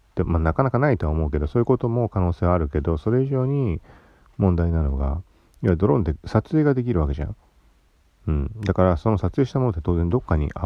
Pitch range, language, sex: 75-105 Hz, Japanese, male